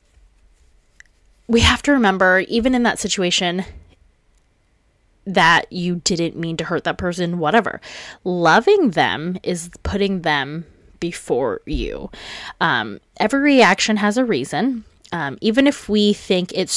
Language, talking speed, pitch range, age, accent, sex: English, 130 wpm, 155-215 Hz, 20-39, American, female